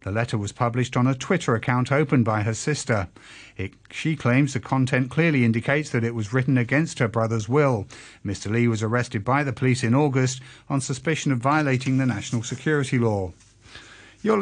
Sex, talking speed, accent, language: male, 185 wpm, British, English